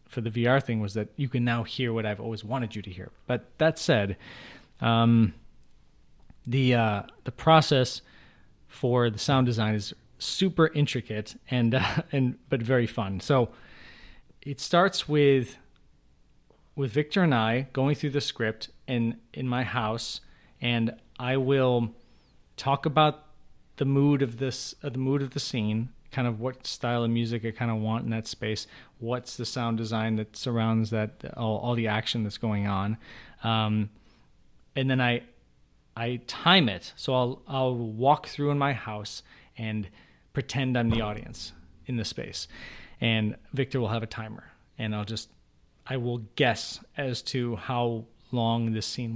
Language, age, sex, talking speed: English, 30-49, male, 165 wpm